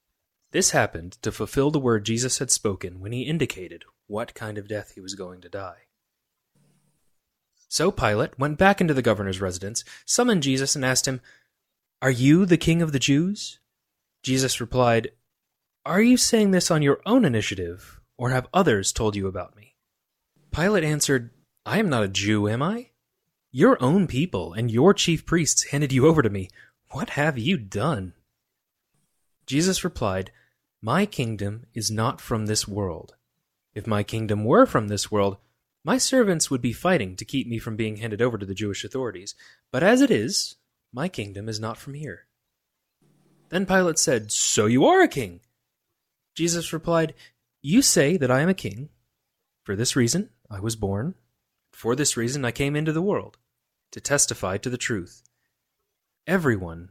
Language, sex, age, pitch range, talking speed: English, male, 30-49, 105-155 Hz, 170 wpm